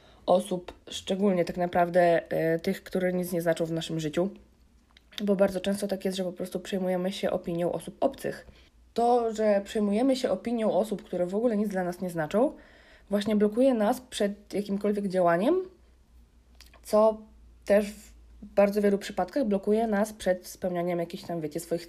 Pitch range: 165-210 Hz